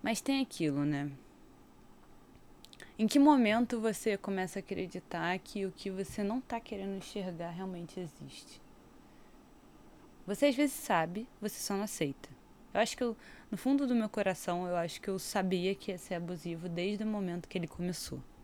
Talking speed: 175 wpm